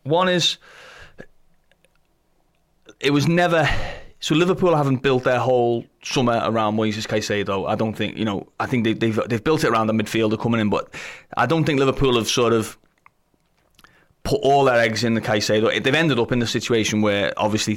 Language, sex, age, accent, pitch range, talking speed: English, male, 30-49, British, 105-125 Hz, 185 wpm